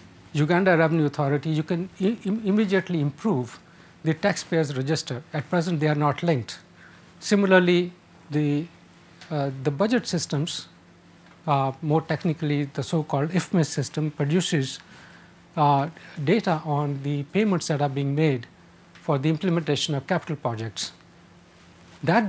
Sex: male